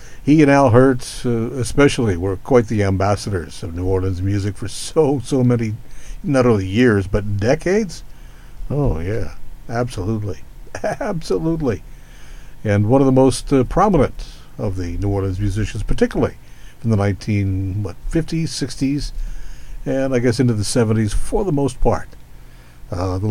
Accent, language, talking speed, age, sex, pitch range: American, English, 145 wpm, 60-79, male, 95-135 Hz